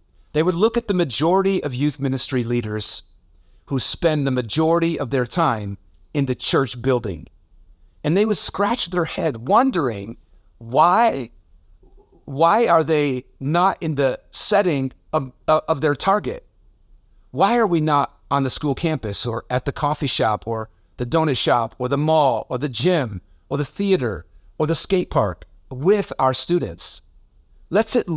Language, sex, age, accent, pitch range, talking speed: English, male, 40-59, American, 100-160 Hz, 160 wpm